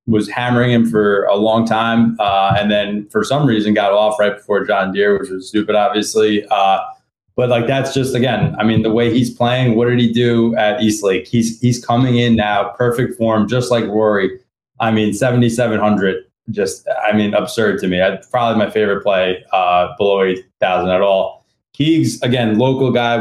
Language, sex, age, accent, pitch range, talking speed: English, male, 20-39, American, 105-120 Hz, 190 wpm